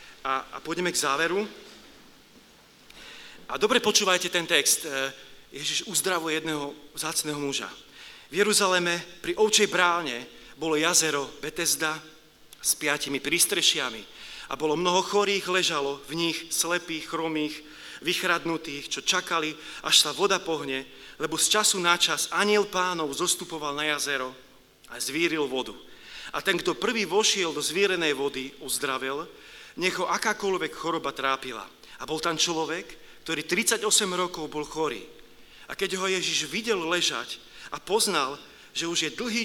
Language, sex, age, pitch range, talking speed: Slovak, male, 40-59, 145-185 Hz, 135 wpm